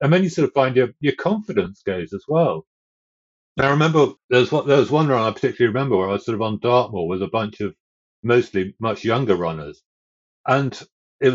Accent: British